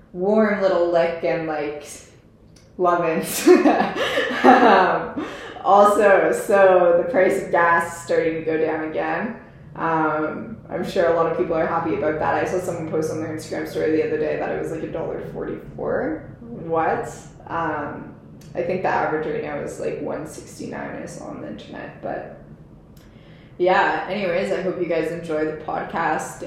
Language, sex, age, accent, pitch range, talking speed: English, female, 20-39, American, 155-190 Hz, 160 wpm